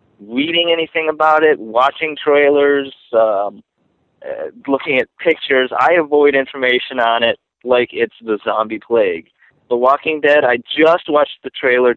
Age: 20-39